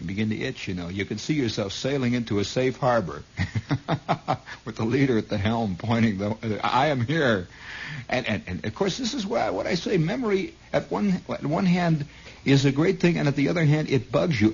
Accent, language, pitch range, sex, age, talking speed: American, English, 95-155 Hz, male, 60-79, 225 wpm